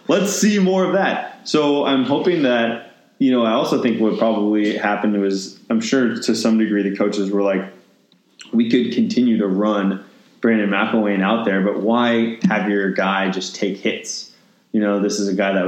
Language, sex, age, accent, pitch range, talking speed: English, male, 20-39, American, 95-110 Hz, 195 wpm